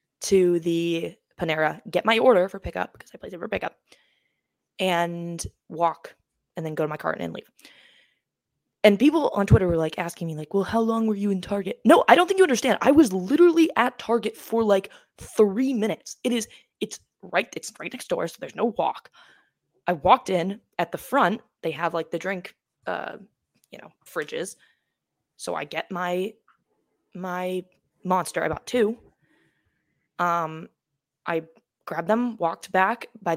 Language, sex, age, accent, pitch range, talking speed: English, female, 20-39, American, 170-225 Hz, 175 wpm